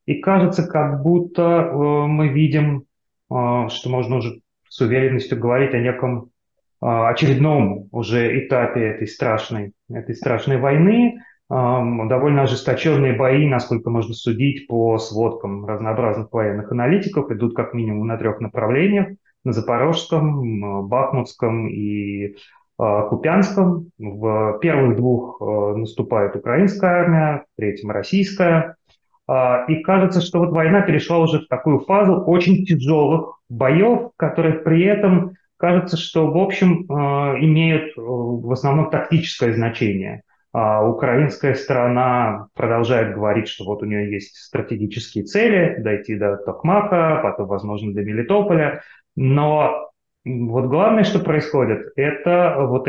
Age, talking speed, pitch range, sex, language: 30-49, 115 wpm, 115-165 Hz, male, Russian